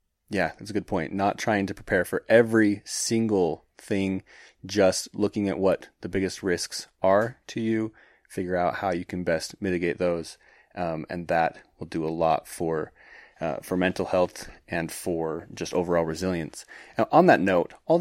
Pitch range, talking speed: 90-105 Hz, 175 wpm